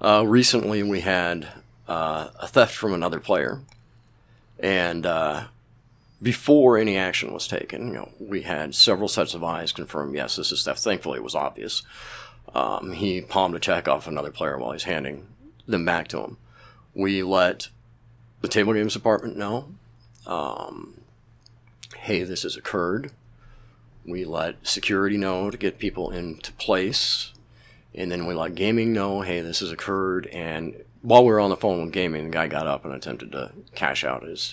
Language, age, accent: English, 40-59, American